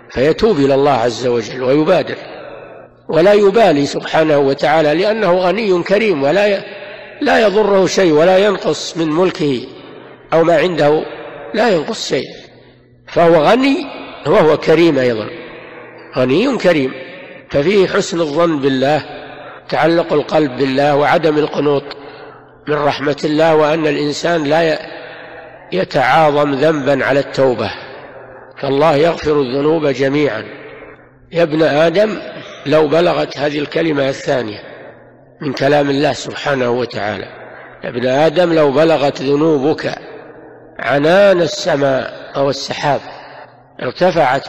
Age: 60-79